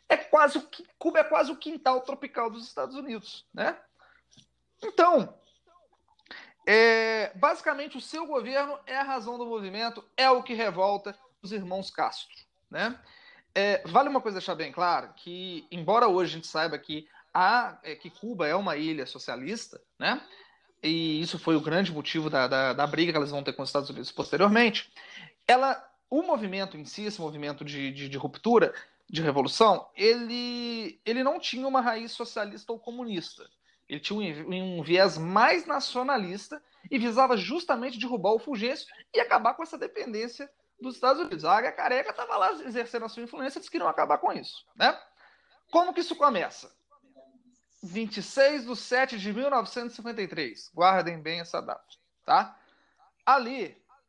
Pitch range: 185-275 Hz